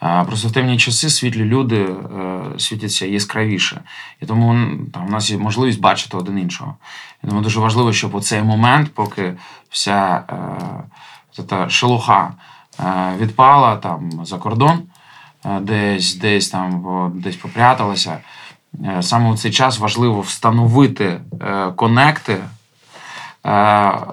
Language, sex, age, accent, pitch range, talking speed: Ukrainian, male, 20-39, native, 100-120 Hz, 130 wpm